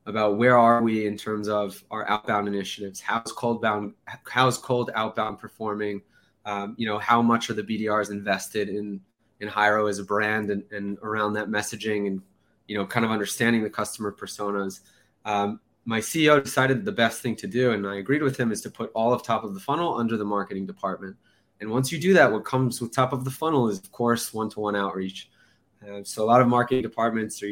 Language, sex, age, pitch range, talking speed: English, male, 20-39, 105-120 Hz, 220 wpm